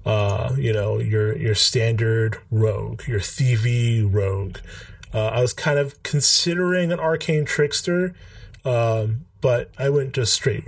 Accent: American